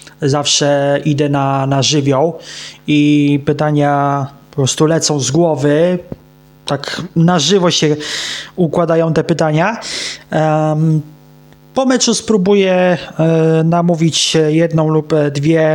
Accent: native